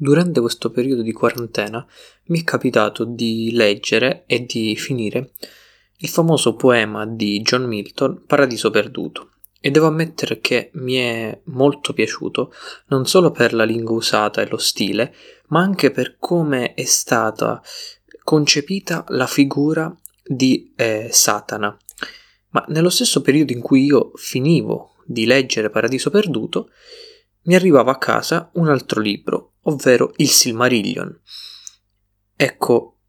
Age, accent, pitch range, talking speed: 20-39, native, 110-155 Hz, 130 wpm